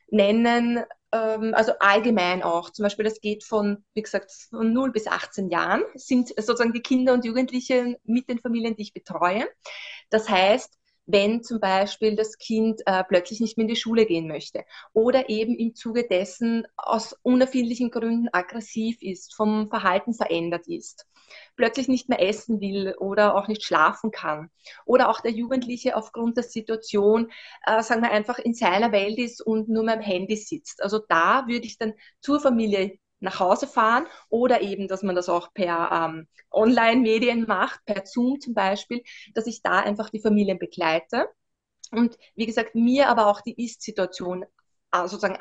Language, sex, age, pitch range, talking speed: German, female, 20-39, 200-235 Hz, 170 wpm